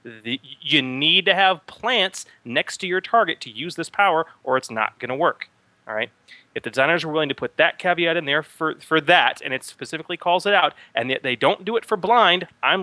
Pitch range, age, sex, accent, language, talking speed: 130-175 Hz, 30-49, male, American, English, 235 wpm